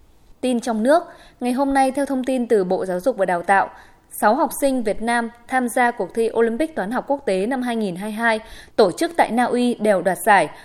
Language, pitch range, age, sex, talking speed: Vietnamese, 205-270 Hz, 20-39, female, 225 wpm